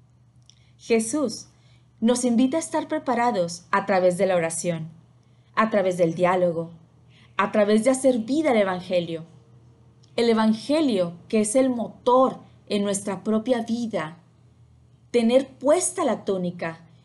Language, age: Spanish, 30-49